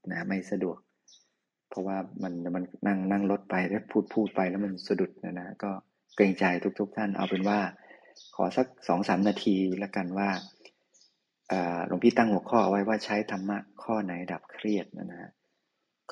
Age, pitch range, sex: 20-39, 95-105 Hz, male